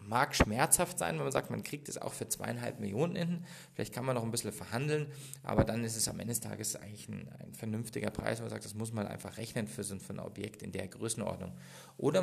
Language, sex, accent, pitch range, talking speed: English, male, German, 100-135 Hz, 240 wpm